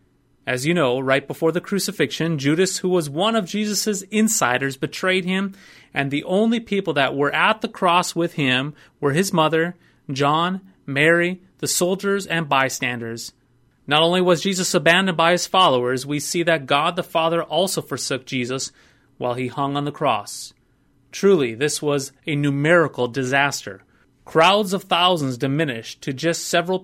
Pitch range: 135-180 Hz